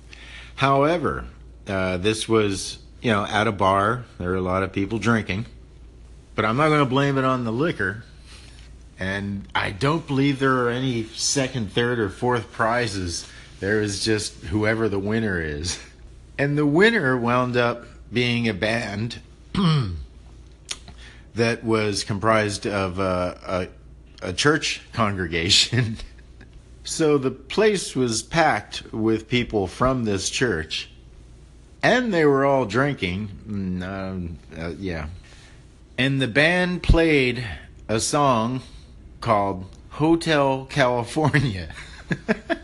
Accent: American